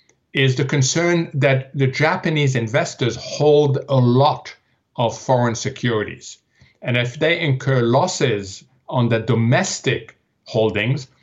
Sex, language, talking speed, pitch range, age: male, English, 120 wpm, 120-140 Hz, 60-79